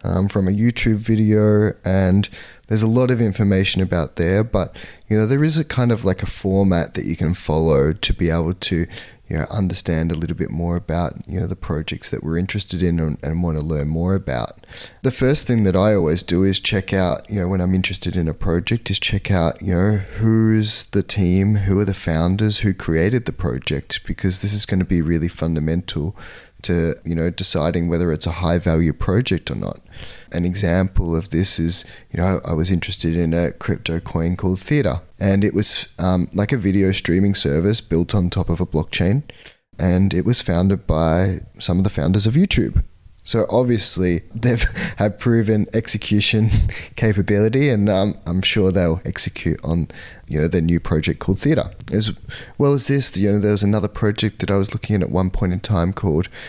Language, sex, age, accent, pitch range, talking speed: English, male, 30-49, Australian, 85-105 Hz, 205 wpm